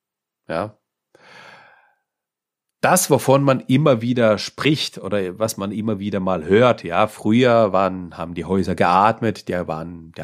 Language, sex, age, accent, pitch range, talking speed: German, male, 40-59, German, 90-110 Hz, 140 wpm